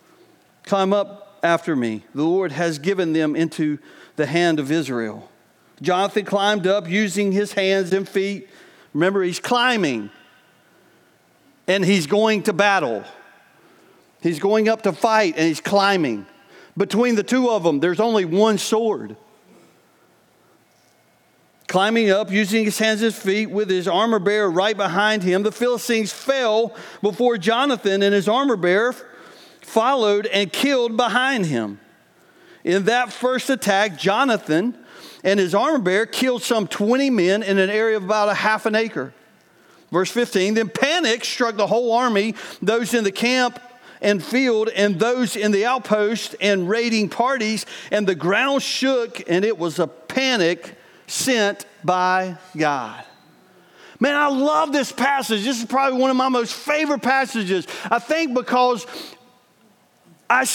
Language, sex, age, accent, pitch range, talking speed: English, male, 40-59, American, 190-245 Hz, 150 wpm